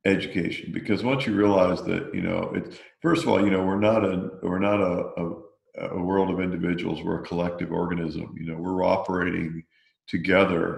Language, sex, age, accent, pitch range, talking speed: English, male, 50-69, American, 95-120 Hz, 190 wpm